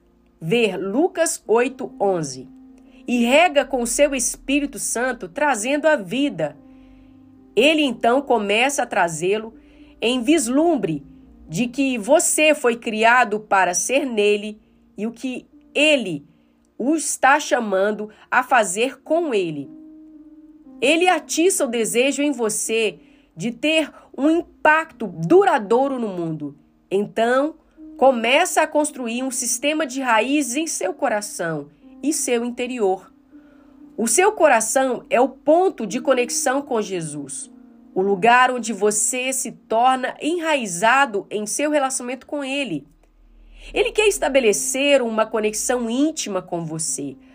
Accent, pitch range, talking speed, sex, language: Brazilian, 225-300 Hz, 125 wpm, female, Portuguese